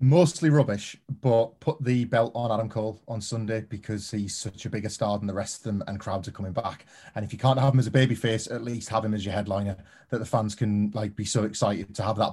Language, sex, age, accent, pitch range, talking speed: English, male, 30-49, British, 105-125 Hz, 270 wpm